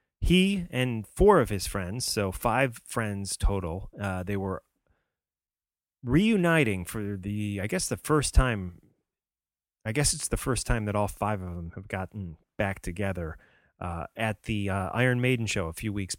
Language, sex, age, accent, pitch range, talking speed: English, male, 30-49, American, 95-120 Hz, 170 wpm